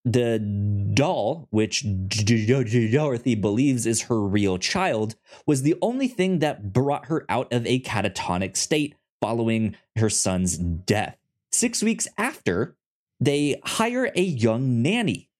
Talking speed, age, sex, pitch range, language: 135 wpm, 20-39, male, 110-155 Hz, English